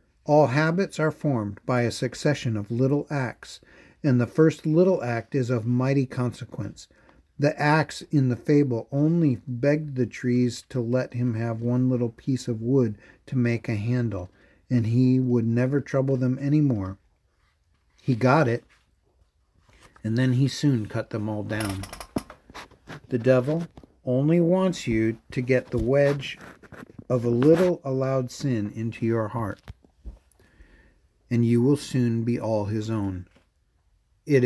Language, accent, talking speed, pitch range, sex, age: English, American, 150 wpm, 110-135 Hz, male, 50-69